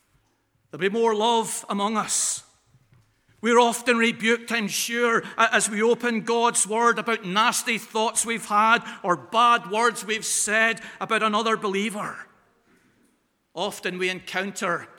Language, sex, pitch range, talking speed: English, male, 170-230 Hz, 130 wpm